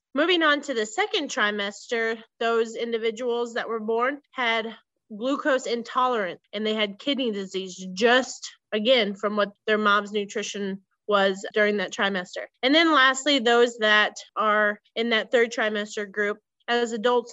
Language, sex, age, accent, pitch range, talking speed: English, female, 30-49, American, 210-255 Hz, 150 wpm